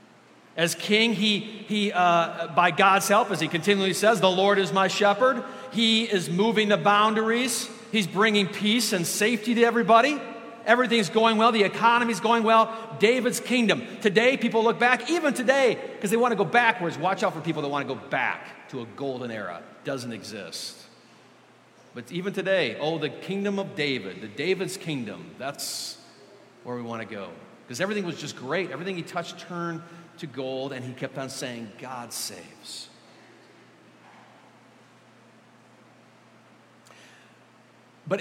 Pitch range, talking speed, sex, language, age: 140-210 Hz, 160 wpm, male, English, 40-59